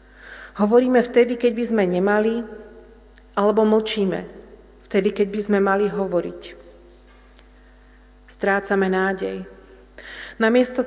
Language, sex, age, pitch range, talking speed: Slovak, female, 40-59, 190-225 Hz, 95 wpm